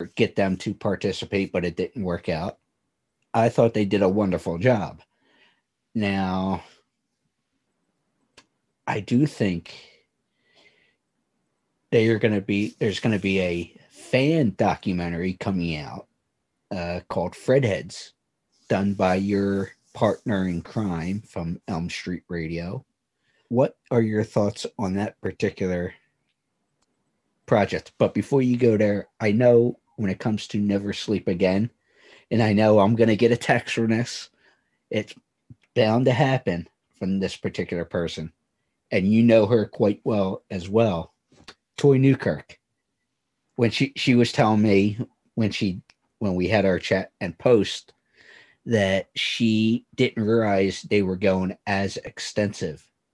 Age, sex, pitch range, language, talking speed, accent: 50-69, male, 95-115 Hz, English, 140 wpm, American